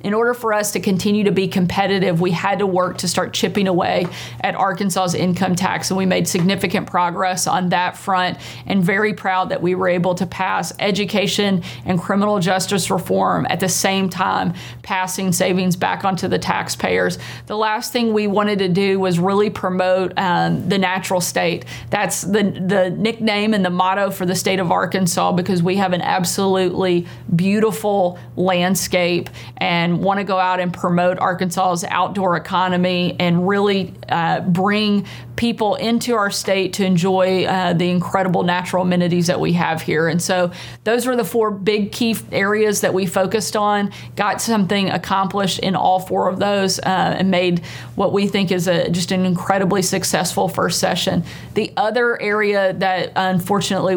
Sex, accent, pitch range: female, American, 180-200 Hz